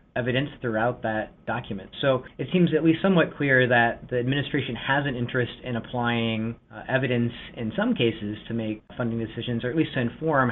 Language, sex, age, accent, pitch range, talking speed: English, male, 30-49, American, 110-135 Hz, 190 wpm